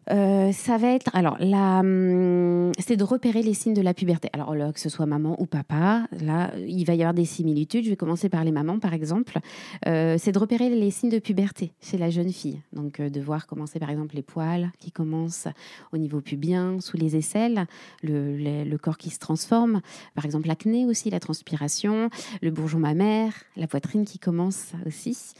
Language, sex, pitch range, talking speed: French, female, 160-215 Hz, 205 wpm